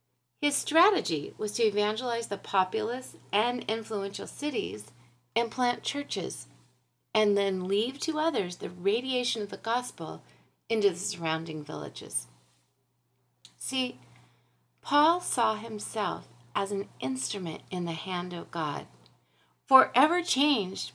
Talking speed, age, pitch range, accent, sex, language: 115 wpm, 40-59, 160-250 Hz, American, female, English